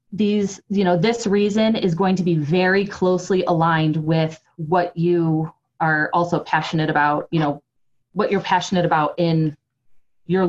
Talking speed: 155 wpm